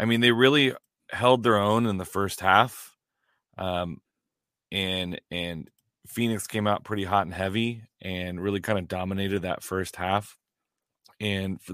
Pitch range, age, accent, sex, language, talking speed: 95-105 Hz, 30-49, American, male, English, 160 wpm